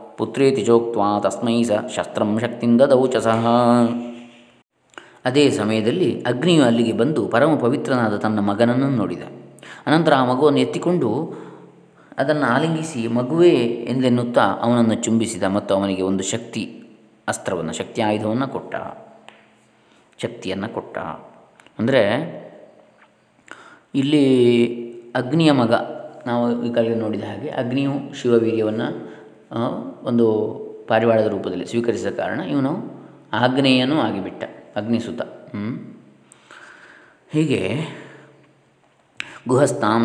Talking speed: 85 wpm